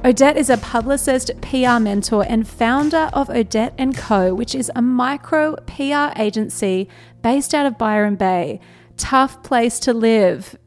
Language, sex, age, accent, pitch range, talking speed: English, female, 30-49, Australian, 205-255 Hz, 145 wpm